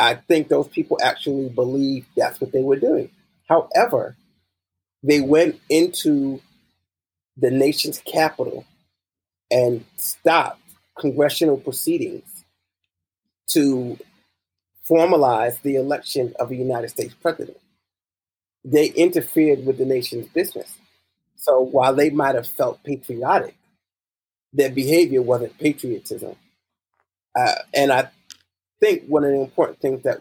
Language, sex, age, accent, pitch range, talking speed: English, male, 40-59, American, 105-150 Hz, 115 wpm